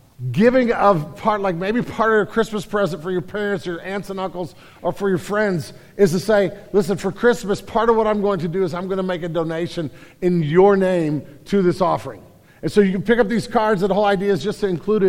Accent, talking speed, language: American, 250 wpm, English